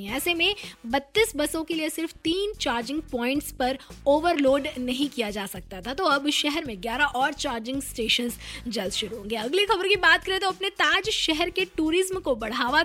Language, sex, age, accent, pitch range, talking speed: Hindi, female, 20-39, native, 250-320 Hz, 190 wpm